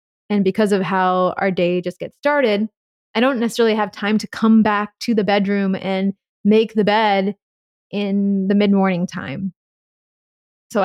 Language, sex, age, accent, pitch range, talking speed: English, female, 20-39, American, 200-240 Hz, 160 wpm